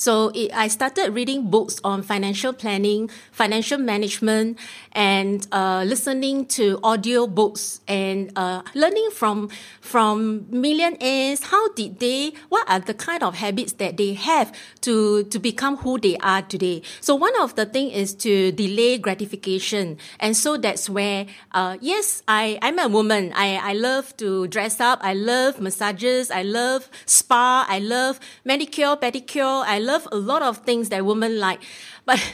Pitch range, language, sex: 205-270 Hz, English, female